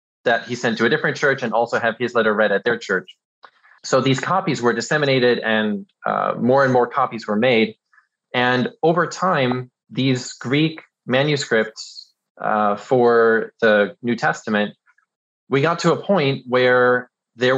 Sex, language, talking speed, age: male, English, 160 wpm, 20-39